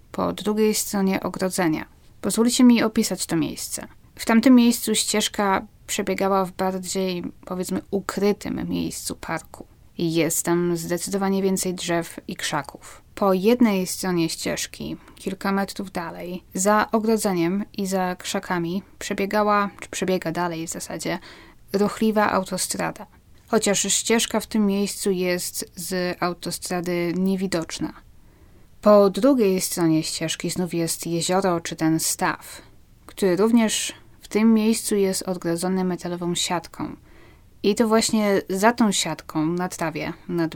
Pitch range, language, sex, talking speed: 175-210 Hz, Polish, female, 125 wpm